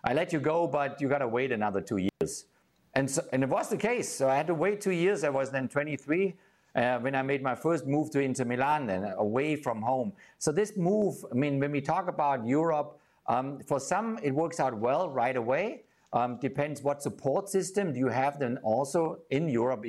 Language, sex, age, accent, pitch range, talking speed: English, male, 50-69, German, 130-160 Hz, 225 wpm